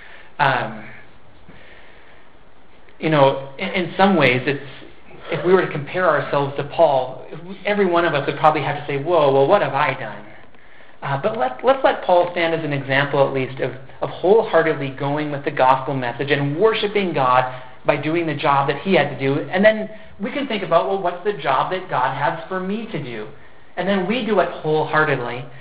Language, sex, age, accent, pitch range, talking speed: English, male, 40-59, American, 140-175 Hz, 195 wpm